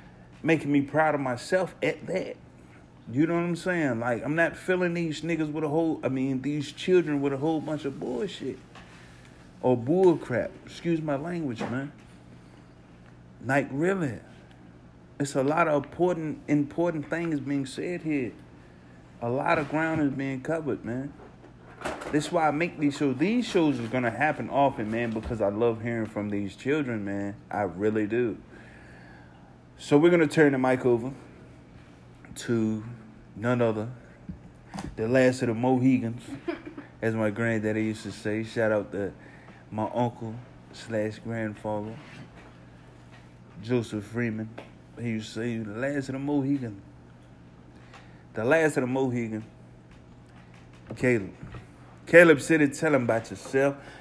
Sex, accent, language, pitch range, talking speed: male, American, English, 100-150 Hz, 150 wpm